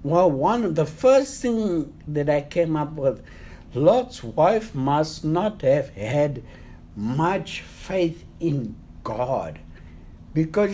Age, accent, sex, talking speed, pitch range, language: 60-79, South African, male, 125 wpm, 135-200 Hz, English